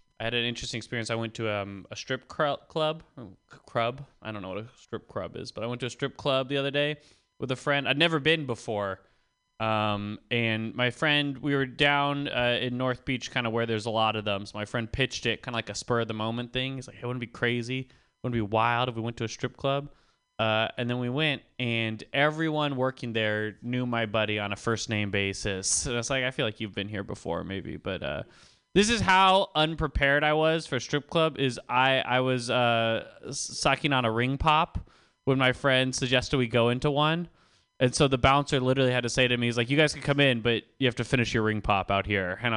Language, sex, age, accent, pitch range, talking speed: English, male, 20-39, American, 110-140 Hz, 245 wpm